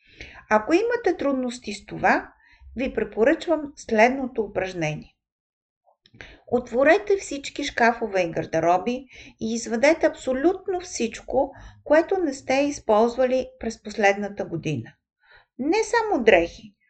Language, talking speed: Bulgarian, 100 wpm